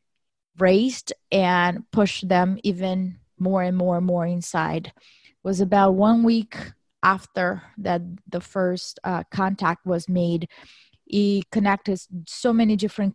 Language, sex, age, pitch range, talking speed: English, female, 20-39, 175-205 Hz, 130 wpm